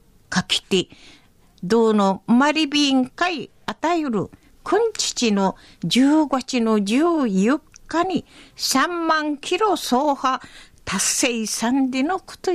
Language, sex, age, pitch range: Japanese, female, 50-69, 225-320 Hz